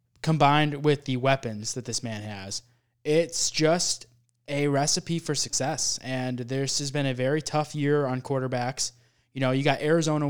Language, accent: English, American